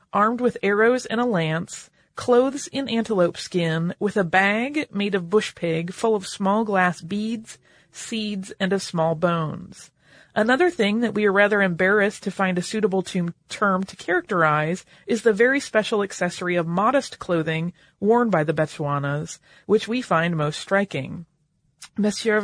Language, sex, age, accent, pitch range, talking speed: English, female, 30-49, American, 175-225 Hz, 160 wpm